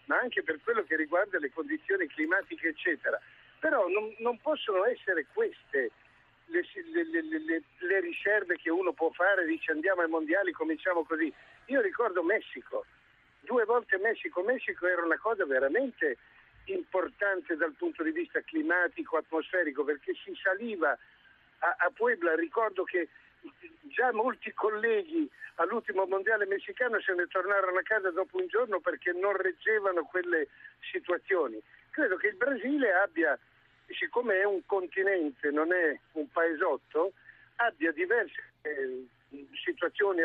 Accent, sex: native, male